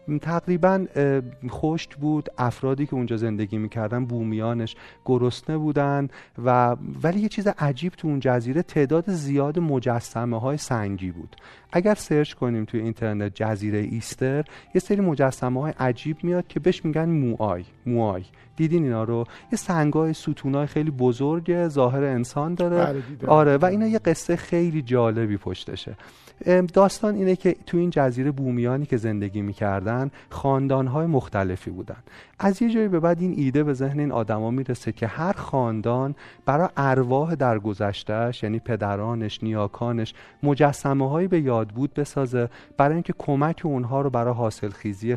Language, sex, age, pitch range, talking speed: Persian, male, 30-49, 115-155 Hz, 145 wpm